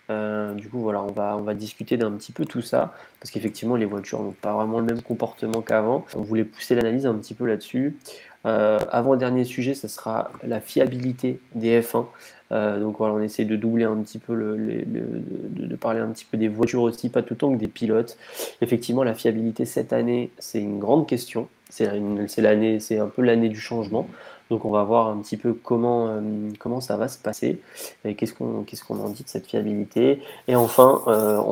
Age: 20-39